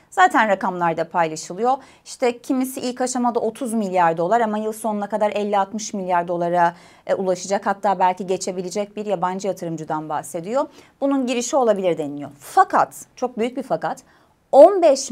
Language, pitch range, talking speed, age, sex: Turkish, 190-280 Hz, 140 wpm, 30-49, female